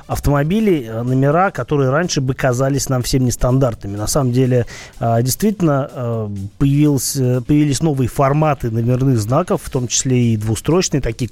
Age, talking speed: 30-49, 125 wpm